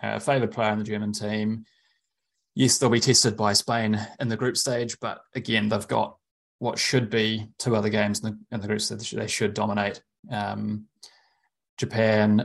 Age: 20-39